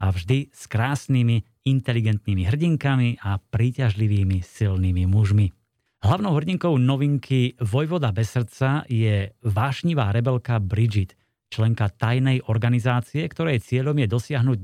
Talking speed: 110 wpm